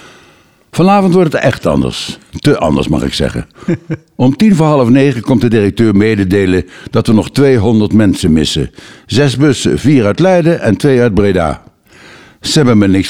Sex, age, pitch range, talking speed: male, 60-79, 95-145 Hz, 175 wpm